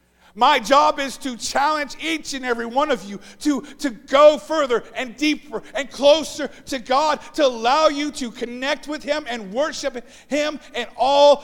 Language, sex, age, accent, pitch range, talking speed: English, male, 50-69, American, 220-295 Hz, 175 wpm